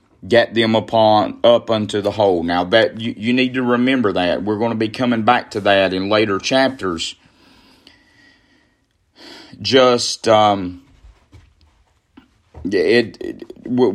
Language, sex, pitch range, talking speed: English, male, 100-125 Hz, 130 wpm